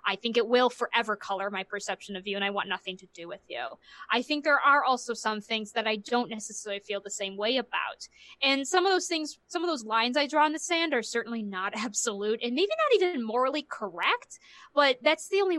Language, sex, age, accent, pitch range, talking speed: English, female, 20-39, American, 205-270 Hz, 240 wpm